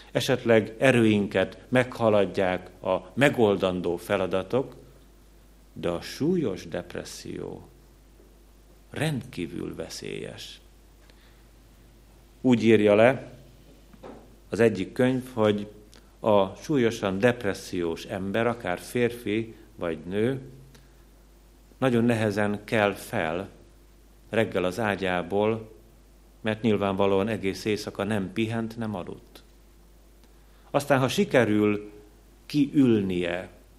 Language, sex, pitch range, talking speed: Hungarian, male, 95-115 Hz, 80 wpm